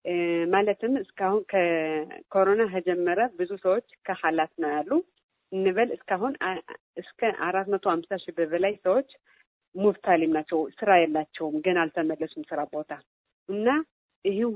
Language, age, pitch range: Amharic, 50-69, 165-200 Hz